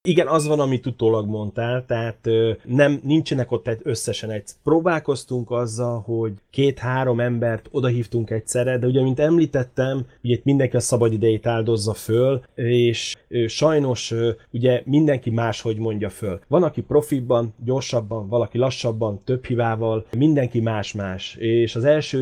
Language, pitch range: Hungarian, 115-130 Hz